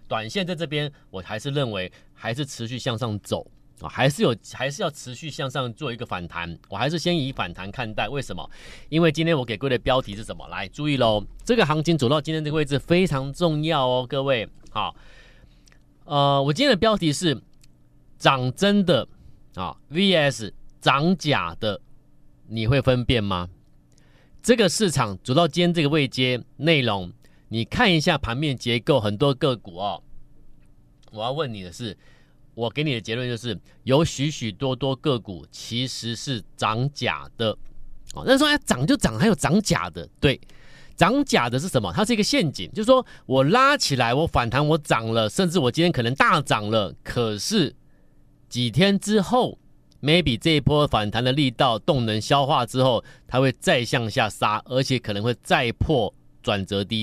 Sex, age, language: male, 30-49, Chinese